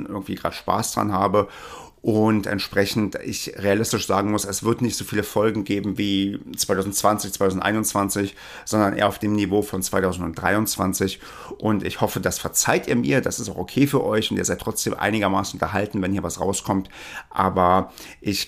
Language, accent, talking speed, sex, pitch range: German, German, 170 wpm, male, 100-115 Hz